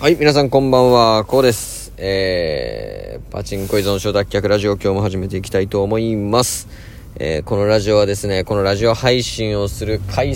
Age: 20-39